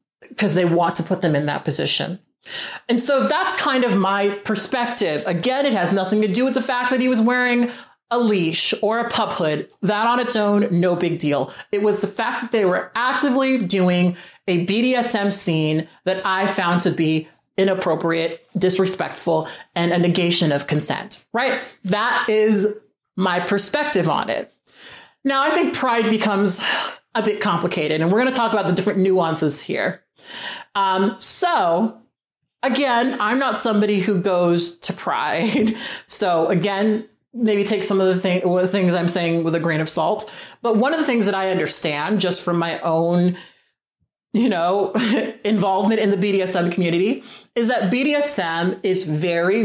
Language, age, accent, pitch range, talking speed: English, 30-49, American, 175-230 Hz, 170 wpm